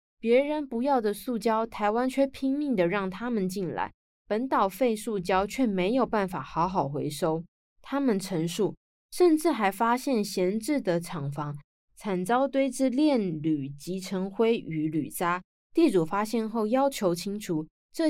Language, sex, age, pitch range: Chinese, female, 20-39, 175-245 Hz